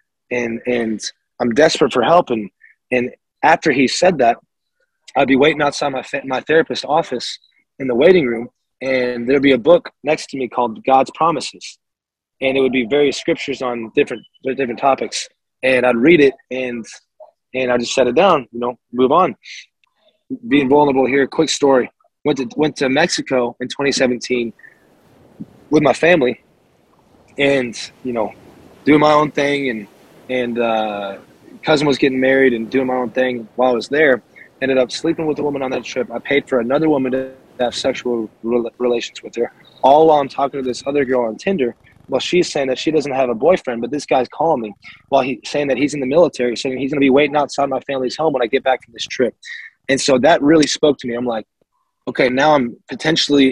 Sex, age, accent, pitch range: male, 20-39, American, 125-145 Hz